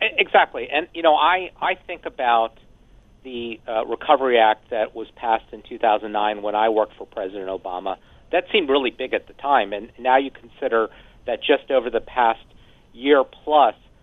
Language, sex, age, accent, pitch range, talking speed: English, male, 50-69, American, 115-155 Hz, 190 wpm